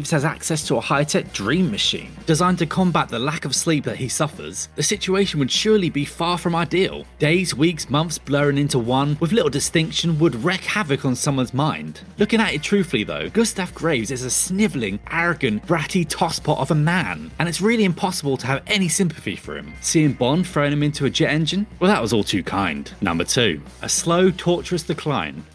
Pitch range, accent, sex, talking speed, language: 145-185 Hz, British, male, 200 wpm, English